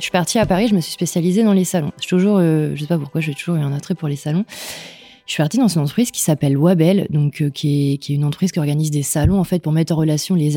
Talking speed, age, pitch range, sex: 300 wpm, 20-39, 155-190 Hz, female